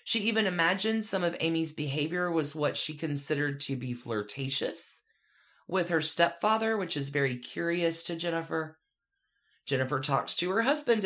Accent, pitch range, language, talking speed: American, 135-190 Hz, English, 150 wpm